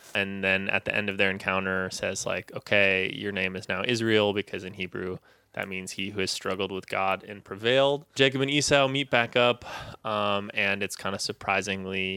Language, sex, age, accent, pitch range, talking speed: English, male, 20-39, American, 95-115 Hz, 200 wpm